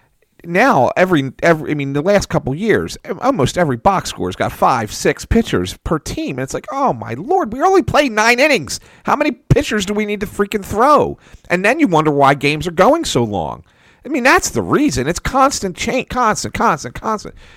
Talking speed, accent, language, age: 210 wpm, American, English, 40-59